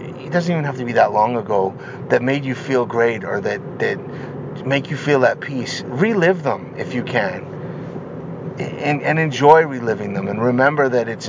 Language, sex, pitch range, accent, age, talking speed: English, male, 120-150 Hz, American, 30-49, 190 wpm